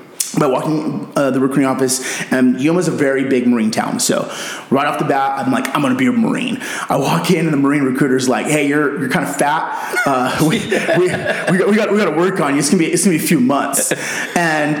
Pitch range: 125-160 Hz